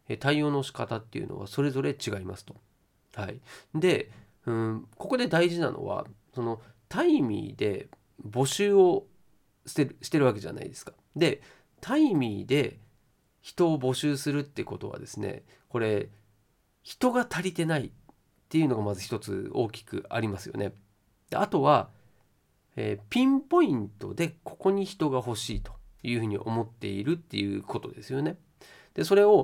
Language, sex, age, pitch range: Japanese, male, 40-59, 105-175 Hz